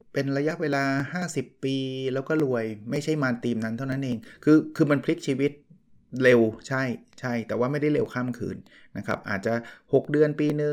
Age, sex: 30-49, male